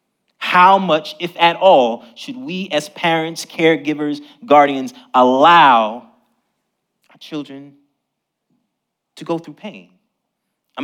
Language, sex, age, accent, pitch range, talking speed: English, male, 30-49, American, 130-190 Hz, 105 wpm